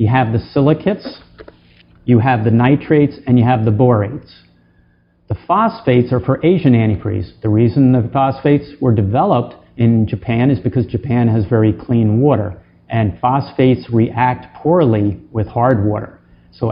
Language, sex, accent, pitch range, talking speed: English, male, American, 110-135 Hz, 150 wpm